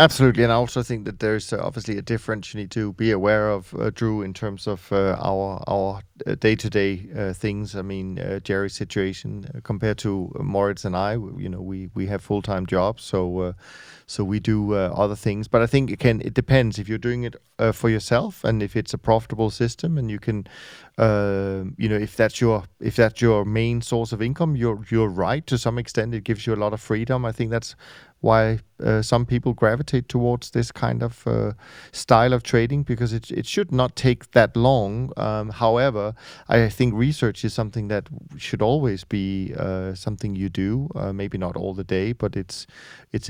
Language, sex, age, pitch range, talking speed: English, male, 30-49, 100-120 Hz, 215 wpm